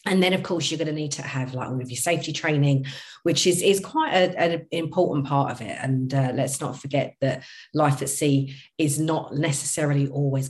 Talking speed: 215 wpm